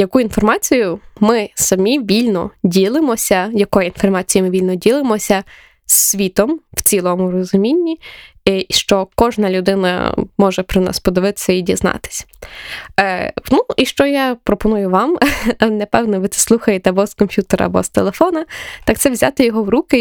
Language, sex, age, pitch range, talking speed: Ukrainian, female, 20-39, 190-230 Hz, 145 wpm